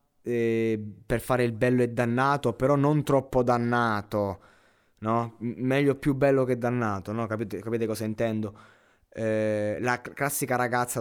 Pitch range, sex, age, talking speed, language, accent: 105-125 Hz, male, 20-39, 125 wpm, Italian, native